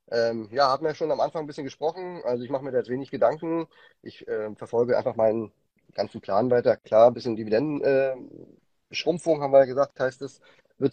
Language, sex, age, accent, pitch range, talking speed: German, male, 30-49, German, 105-145 Hz, 210 wpm